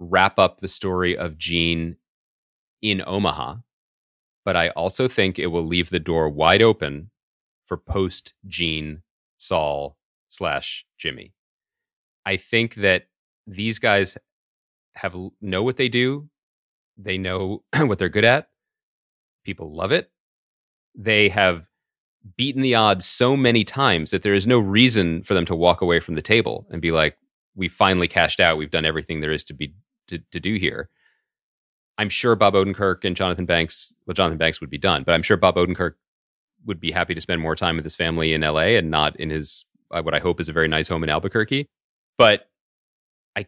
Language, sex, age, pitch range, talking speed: English, male, 30-49, 80-100 Hz, 180 wpm